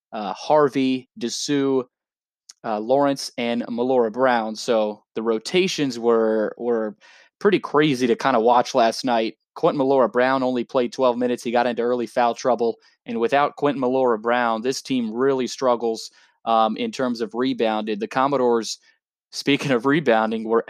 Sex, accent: male, American